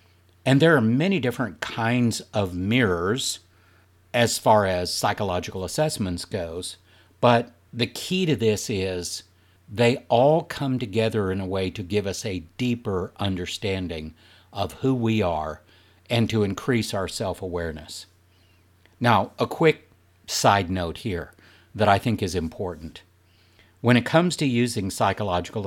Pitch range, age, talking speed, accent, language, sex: 90-120 Hz, 60-79, 140 wpm, American, English, male